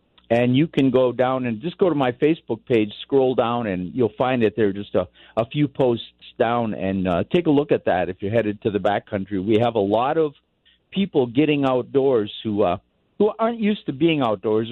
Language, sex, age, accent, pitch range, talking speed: English, male, 50-69, American, 115-155 Hz, 225 wpm